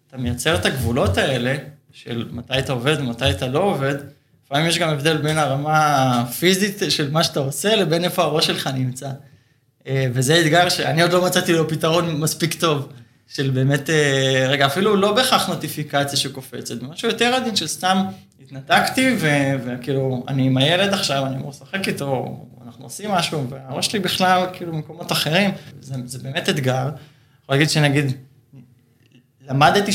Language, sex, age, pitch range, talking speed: Hebrew, male, 20-39, 130-165 Hz, 150 wpm